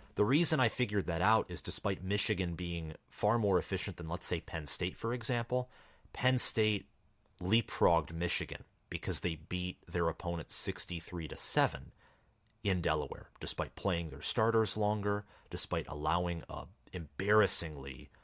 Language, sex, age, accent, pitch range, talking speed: English, male, 30-49, American, 80-100 Hz, 140 wpm